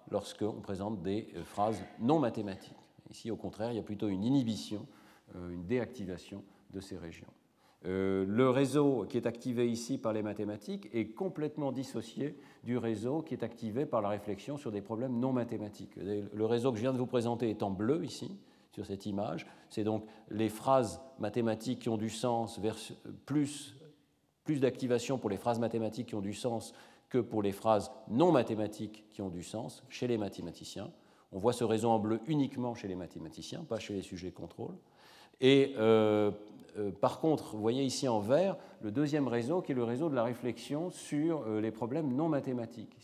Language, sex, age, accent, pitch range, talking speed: French, male, 40-59, French, 105-130 Hz, 190 wpm